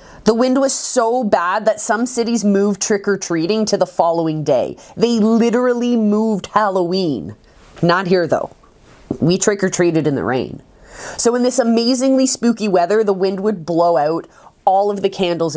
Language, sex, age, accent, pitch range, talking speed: English, female, 20-39, American, 170-220 Hz, 160 wpm